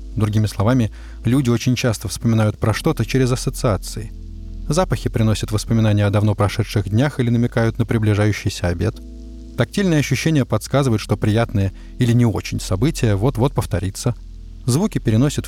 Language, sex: Russian, male